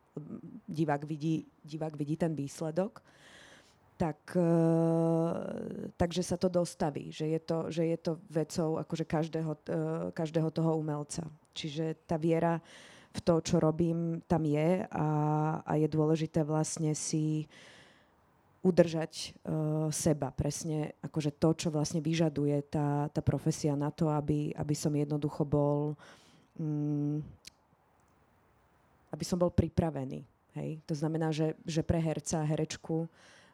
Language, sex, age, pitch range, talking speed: Slovak, female, 20-39, 155-170 Hz, 130 wpm